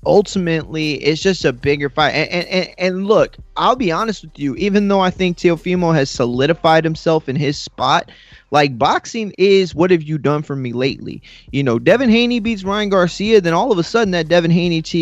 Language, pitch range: English, 140-185 Hz